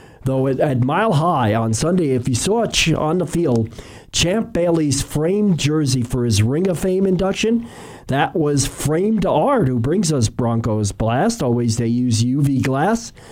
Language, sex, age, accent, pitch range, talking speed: English, male, 50-69, American, 125-175 Hz, 165 wpm